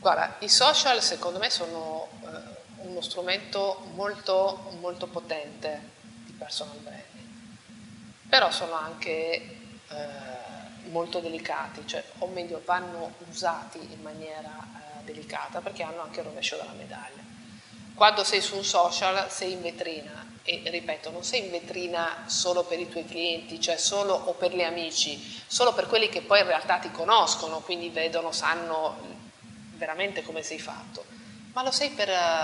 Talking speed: 150 wpm